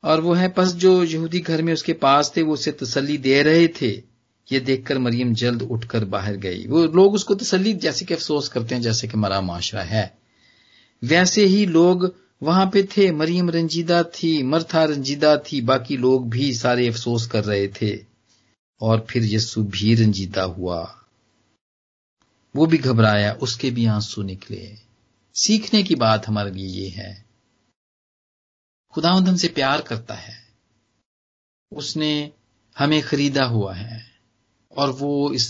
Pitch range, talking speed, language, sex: 110-160 Hz, 160 wpm, Punjabi, male